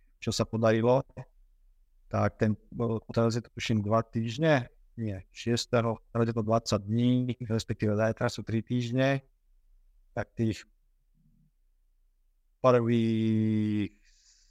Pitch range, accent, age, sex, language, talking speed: 105-115 Hz, native, 50-69, male, Czech, 105 wpm